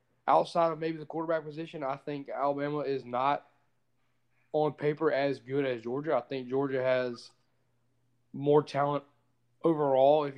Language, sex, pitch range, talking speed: English, male, 125-150 Hz, 145 wpm